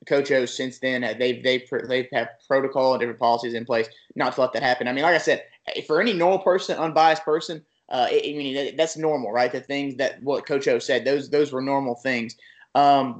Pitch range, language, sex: 130-155 Hz, English, male